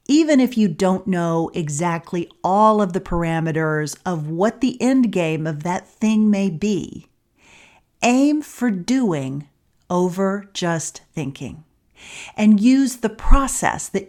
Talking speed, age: 130 wpm, 40-59